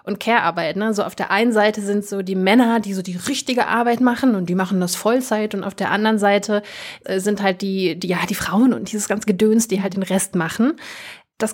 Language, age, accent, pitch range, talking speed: German, 20-39, German, 195-230 Hz, 235 wpm